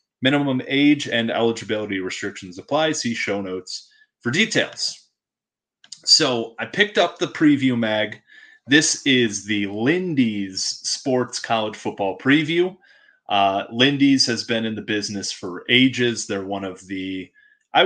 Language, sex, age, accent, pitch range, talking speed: English, male, 30-49, American, 100-130 Hz, 135 wpm